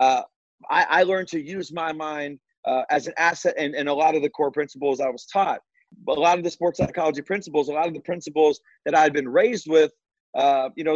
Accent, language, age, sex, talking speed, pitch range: American, English, 30-49, male, 240 wpm, 140-170 Hz